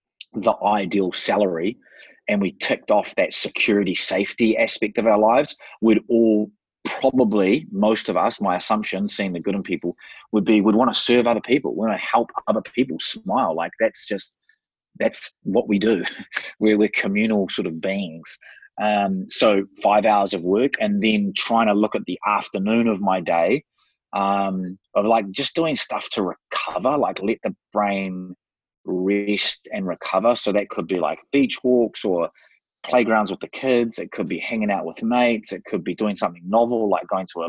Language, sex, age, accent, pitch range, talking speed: English, male, 30-49, Australian, 95-115 Hz, 185 wpm